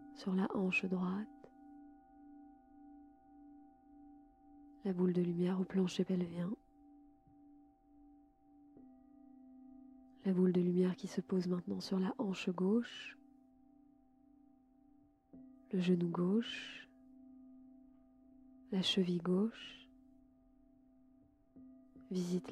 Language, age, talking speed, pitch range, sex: French, 20-39, 80 wpm, 185-265 Hz, female